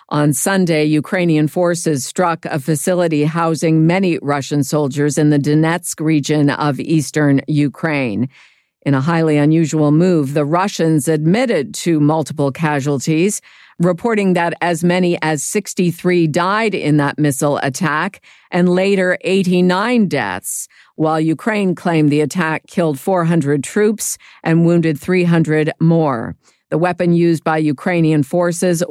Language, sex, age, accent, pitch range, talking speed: English, female, 50-69, American, 150-180 Hz, 130 wpm